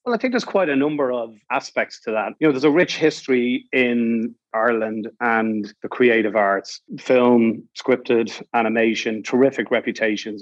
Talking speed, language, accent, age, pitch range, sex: 160 wpm, English, Irish, 30-49, 110-125 Hz, male